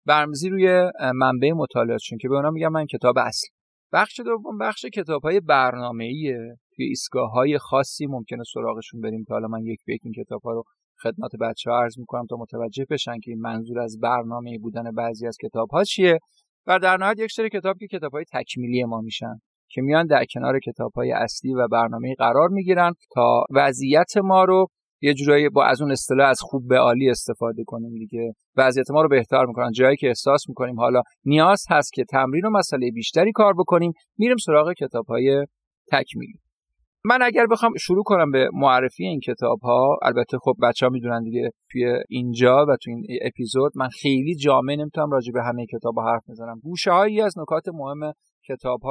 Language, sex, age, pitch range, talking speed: Persian, male, 30-49, 120-160 Hz, 185 wpm